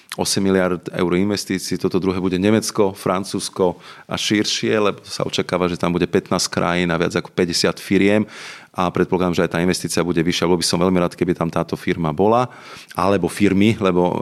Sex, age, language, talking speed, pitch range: male, 40-59, Slovak, 190 wpm, 85-95 Hz